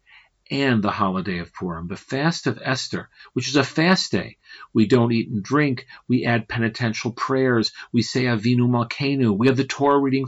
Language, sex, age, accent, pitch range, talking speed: English, male, 50-69, American, 110-135 Hz, 185 wpm